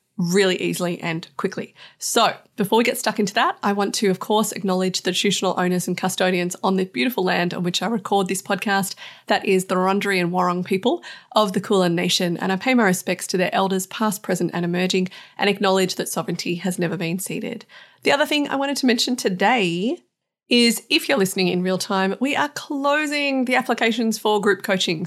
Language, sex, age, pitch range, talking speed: English, female, 30-49, 185-240 Hz, 205 wpm